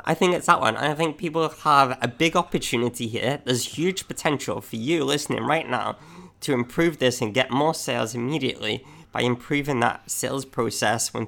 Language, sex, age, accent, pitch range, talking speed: English, male, 20-39, British, 115-160 Hz, 185 wpm